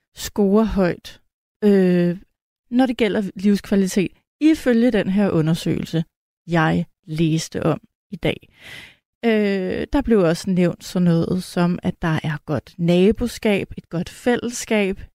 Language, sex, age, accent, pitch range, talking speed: Danish, female, 30-49, native, 185-230 Hz, 125 wpm